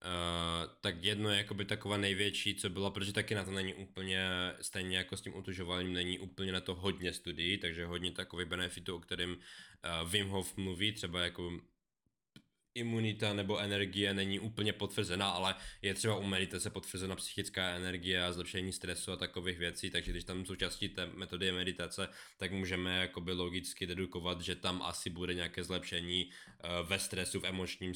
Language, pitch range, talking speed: Czech, 90-110 Hz, 170 wpm